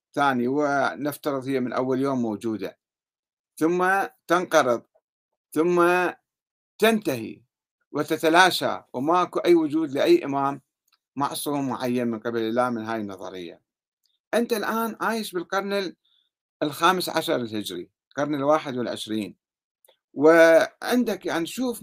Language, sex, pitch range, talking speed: Arabic, male, 130-180 Hz, 105 wpm